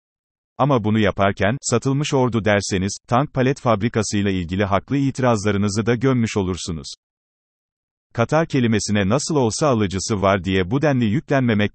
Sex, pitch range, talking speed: male, 100-130 Hz, 130 wpm